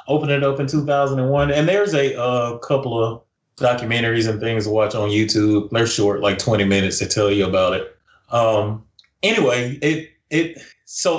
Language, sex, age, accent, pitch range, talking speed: English, male, 30-49, American, 105-135 Hz, 175 wpm